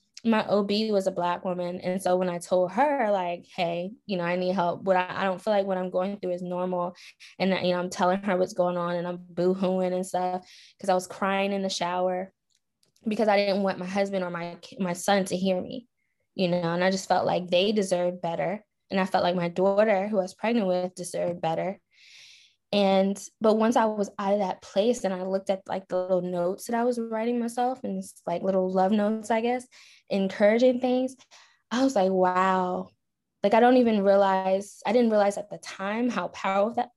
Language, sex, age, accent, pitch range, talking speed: English, female, 10-29, American, 185-225 Hz, 225 wpm